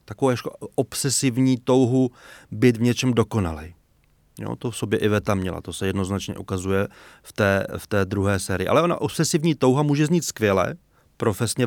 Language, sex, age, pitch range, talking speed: Czech, male, 30-49, 110-140 Hz, 170 wpm